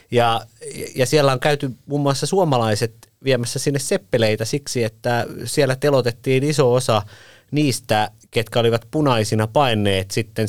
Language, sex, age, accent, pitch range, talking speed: Finnish, male, 30-49, native, 110-145 Hz, 130 wpm